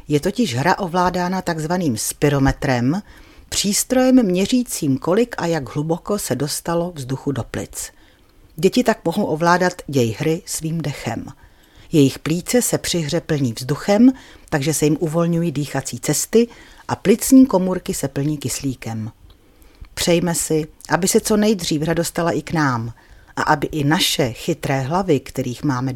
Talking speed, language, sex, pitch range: 145 wpm, Czech, female, 140-180 Hz